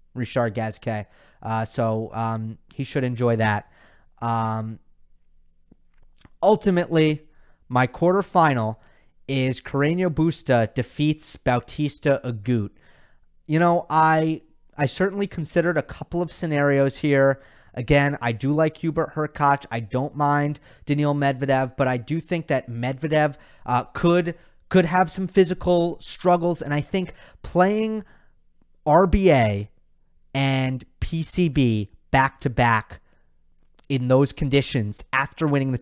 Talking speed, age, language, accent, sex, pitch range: 115 wpm, 30-49, English, American, male, 115-155 Hz